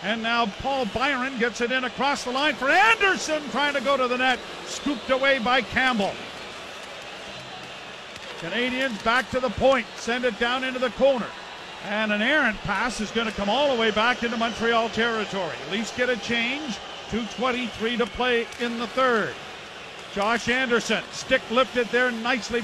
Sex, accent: male, American